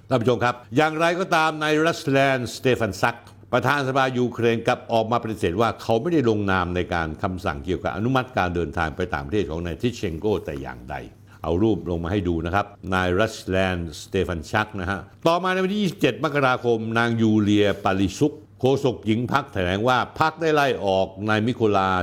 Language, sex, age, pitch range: Thai, male, 60-79, 95-135 Hz